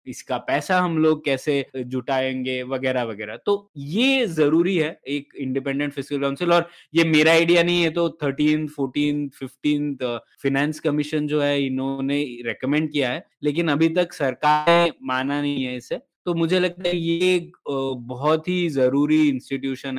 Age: 20-39